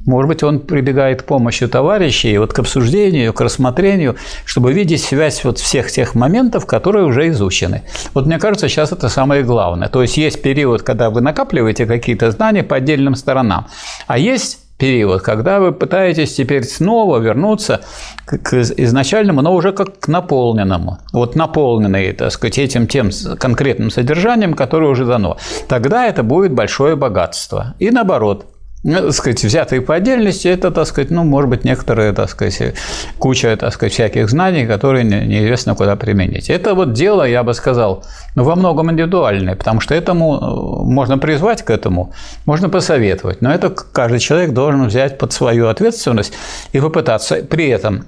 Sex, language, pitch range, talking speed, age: male, Russian, 115-160 Hz, 155 wpm, 50-69